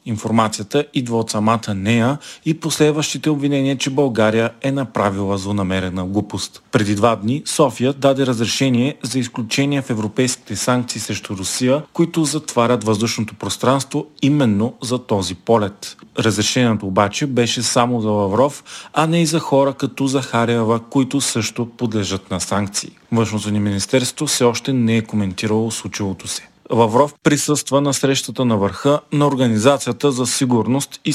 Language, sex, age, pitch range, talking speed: Bulgarian, male, 40-59, 105-135 Hz, 145 wpm